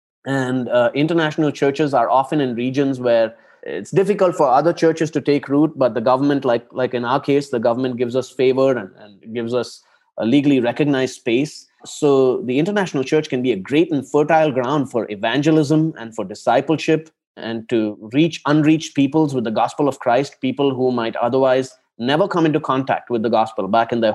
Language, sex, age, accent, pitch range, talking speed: English, male, 20-39, Indian, 125-155 Hz, 195 wpm